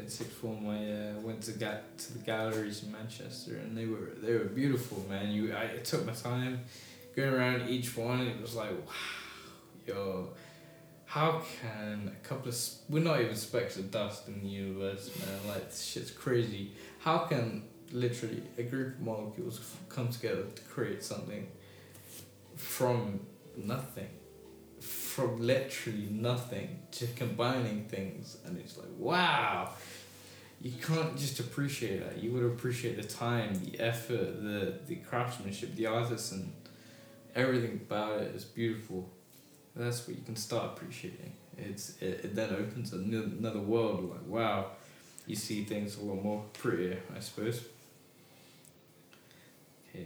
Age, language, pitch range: 10-29, English, 105-125 Hz